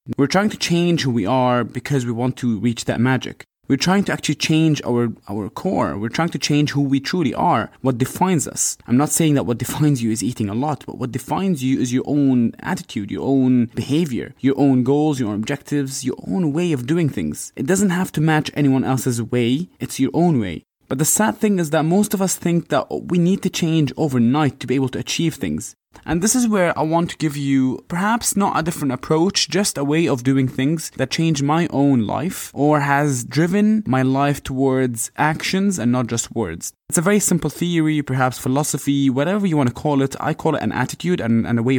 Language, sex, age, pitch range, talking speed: English, male, 20-39, 125-160 Hz, 230 wpm